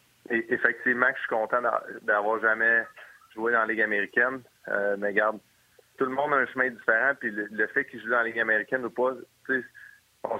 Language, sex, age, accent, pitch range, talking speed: French, male, 30-49, Canadian, 110-130 Hz, 195 wpm